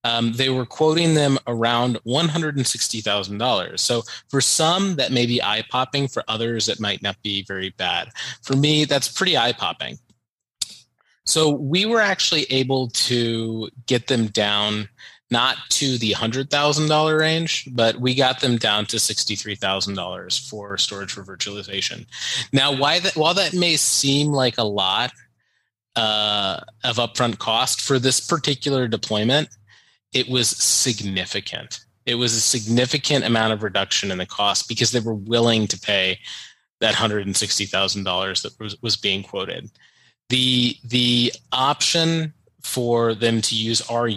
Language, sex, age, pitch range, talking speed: English, male, 20-39, 105-135 Hz, 140 wpm